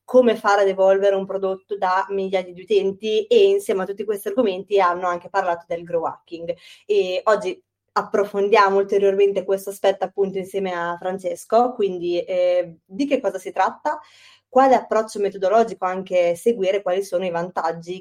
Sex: female